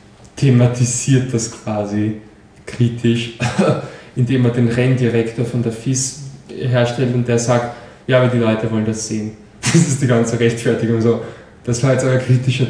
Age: 10-29